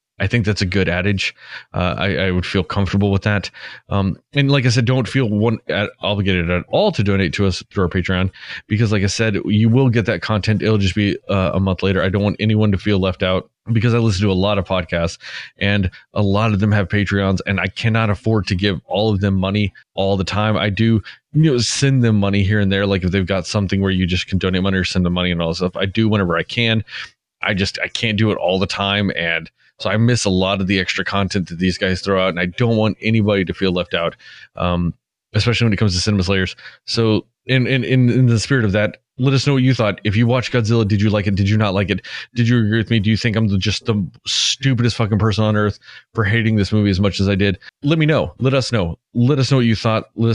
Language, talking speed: English, 275 wpm